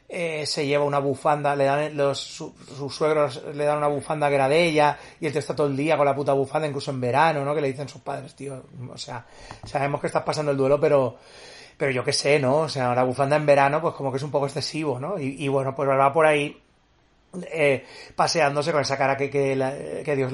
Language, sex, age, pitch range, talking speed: Spanish, male, 30-49, 135-155 Hz, 255 wpm